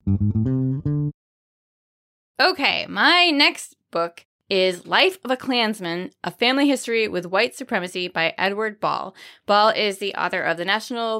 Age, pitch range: 20-39, 175-225 Hz